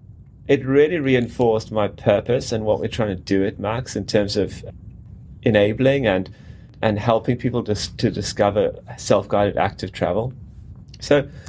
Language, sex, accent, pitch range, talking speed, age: English, male, British, 100-120 Hz, 145 wpm, 30-49